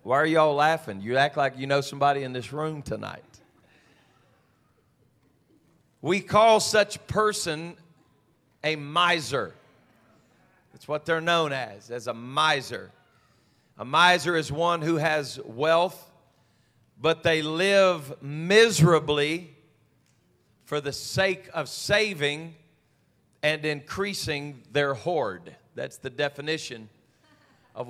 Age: 40-59